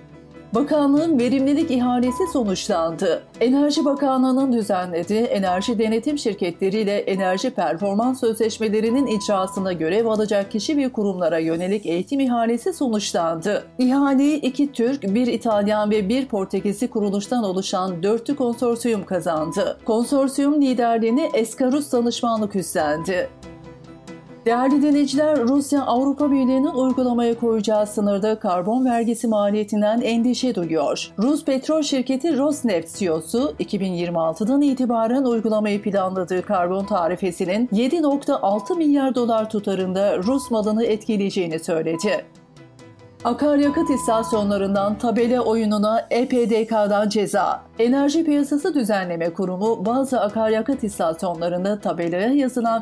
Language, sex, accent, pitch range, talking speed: Turkish, female, native, 200-255 Hz, 100 wpm